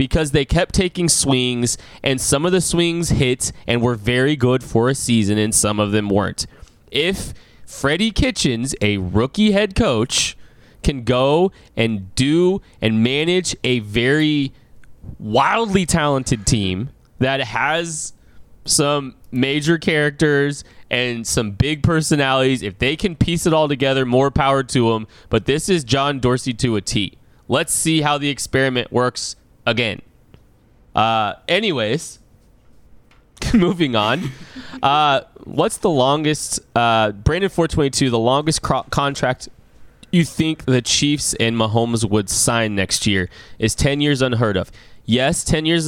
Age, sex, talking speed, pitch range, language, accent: 20-39, male, 140 wpm, 110-145 Hz, English, American